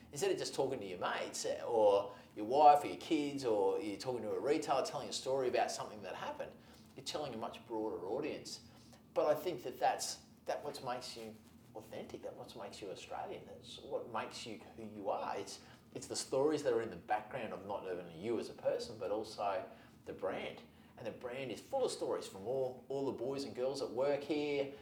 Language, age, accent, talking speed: English, 30-49, Australian, 220 wpm